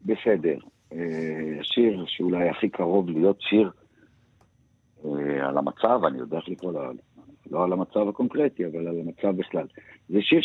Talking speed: 130 wpm